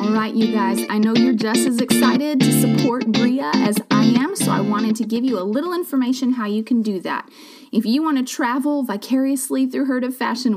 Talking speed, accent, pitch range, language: 220 wpm, American, 220-265 Hz, English